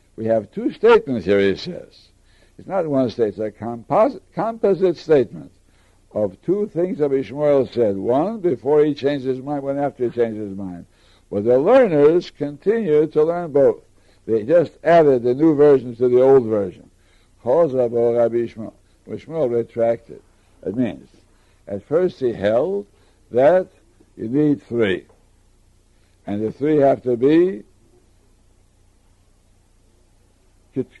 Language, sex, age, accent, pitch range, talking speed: English, male, 60-79, American, 95-145 Hz, 140 wpm